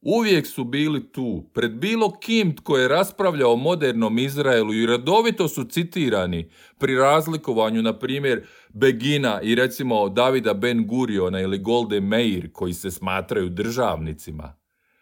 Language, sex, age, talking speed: Croatian, male, 50-69, 130 wpm